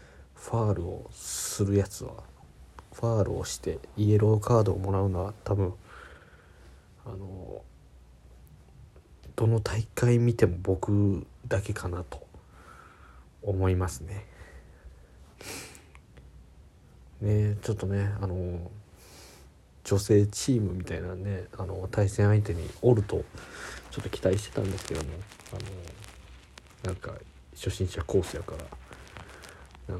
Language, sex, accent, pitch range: Japanese, male, native, 80-105 Hz